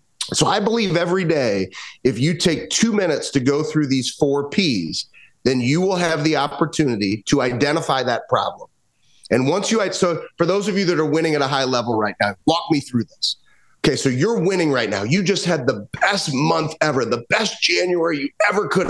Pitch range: 135-180 Hz